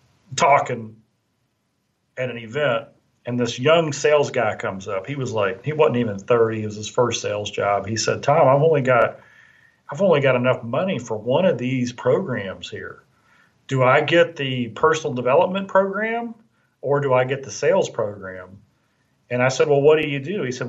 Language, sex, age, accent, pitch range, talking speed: English, male, 40-59, American, 120-170 Hz, 190 wpm